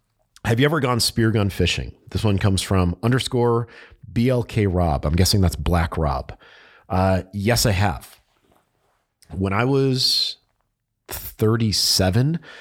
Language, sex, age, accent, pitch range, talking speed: English, male, 40-59, American, 90-115 Hz, 130 wpm